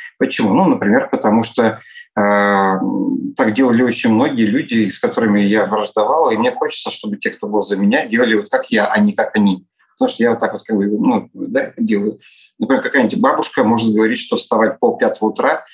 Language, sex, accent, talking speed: Russian, male, native, 185 wpm